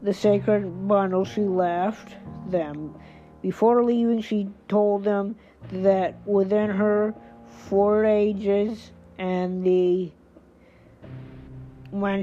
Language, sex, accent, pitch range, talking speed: English, female, American, 175-205 Hz, 95 wpm